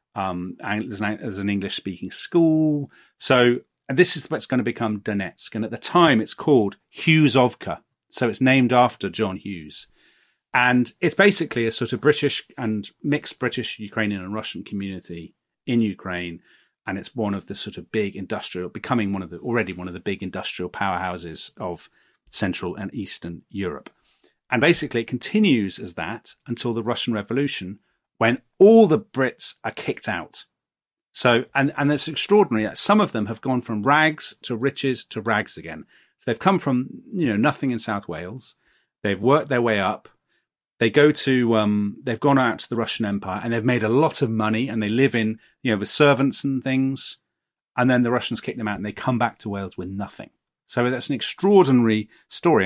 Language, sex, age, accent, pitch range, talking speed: English, male, 40-59, British, 105-135 Hz, 190 wpm